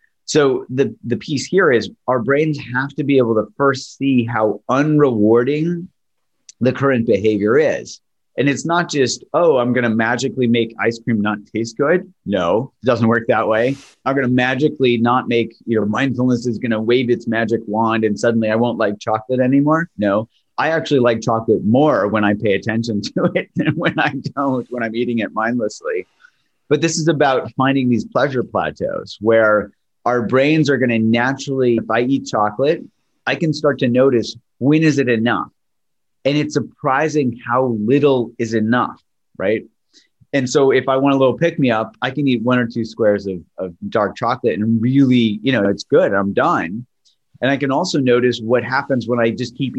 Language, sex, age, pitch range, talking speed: English, male, 30-49, 115-140 Hz, 195 wpm